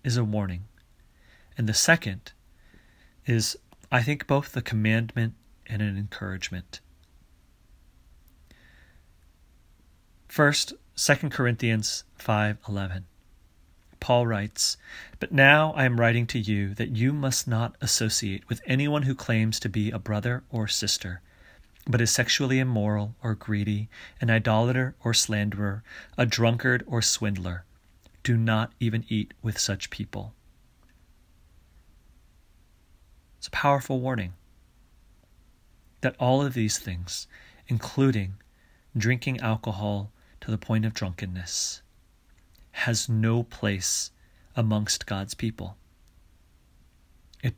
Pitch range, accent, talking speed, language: 85-115 Hz, American, 110 wpm, English